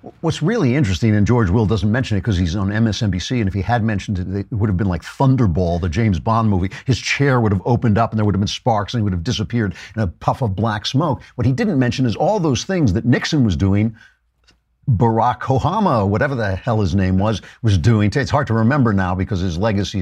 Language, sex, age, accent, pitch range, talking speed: English, male, 50-69, American, 105-150 Hz, 245 wpm